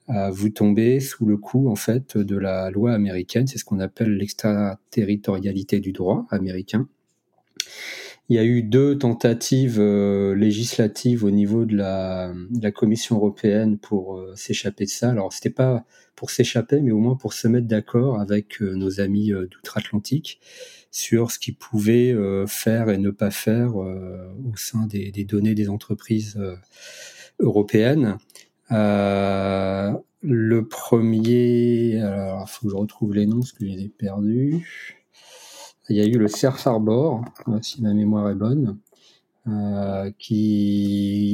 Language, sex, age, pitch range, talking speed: French, male, 40-59, 100-120 Hz, 155 wpm